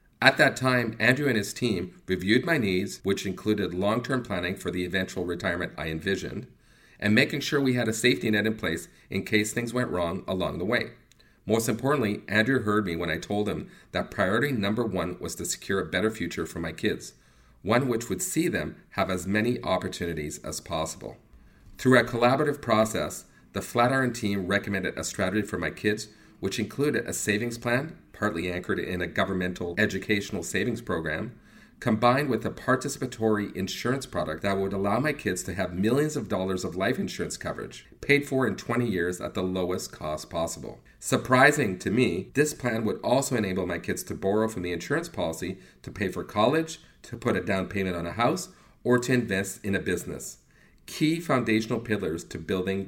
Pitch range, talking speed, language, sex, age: 90-120 Hz, 190 wpm, English, male, 40-59